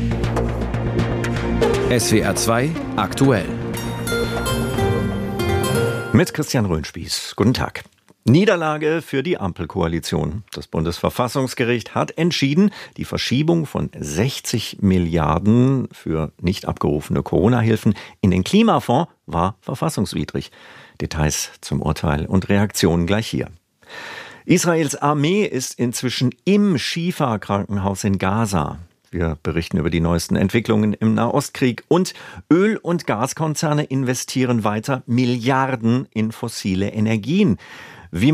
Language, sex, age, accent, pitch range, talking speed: German, male, 50-69, German, 90-135 Hz, 100 wpm